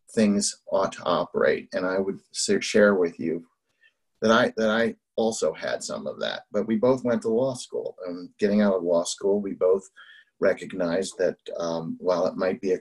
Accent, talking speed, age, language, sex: American, 195 wpm, 30-49, English, male